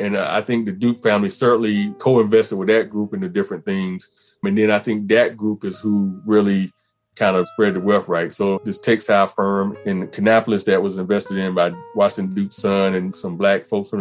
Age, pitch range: 30-49, 100-120 Hz